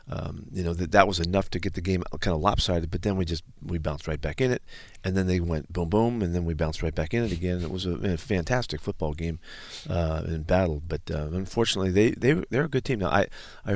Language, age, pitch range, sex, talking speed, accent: English, 40-59, 85-100 Hz, male, 265 wpm, American